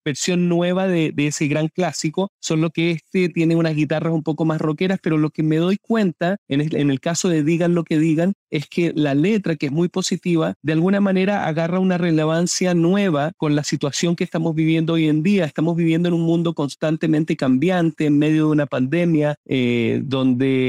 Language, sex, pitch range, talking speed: Spanish, male, 145-170 Hz, 205 wpm